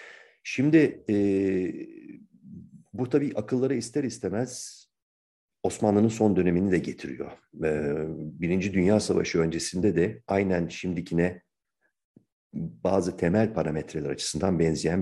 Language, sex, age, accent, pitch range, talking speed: Turkish, male, 50-69, native, 80-105 Hz, 100 wpm